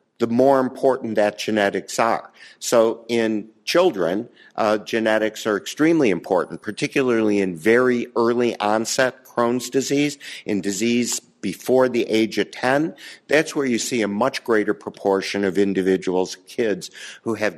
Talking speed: 140 wpm